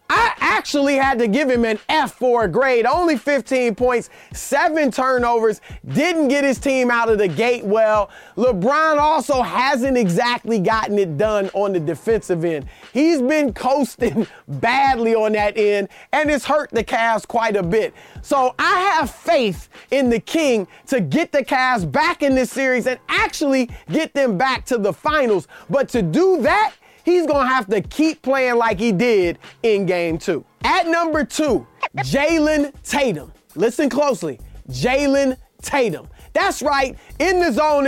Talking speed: 165 wpm